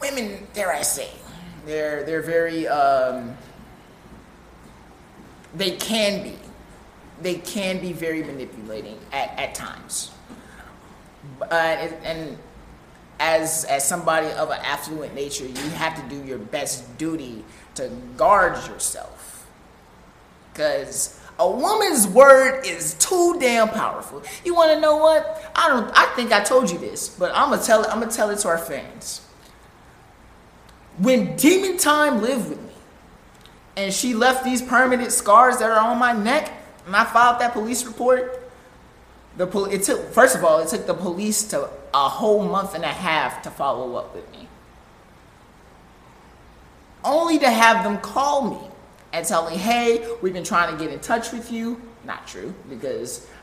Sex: male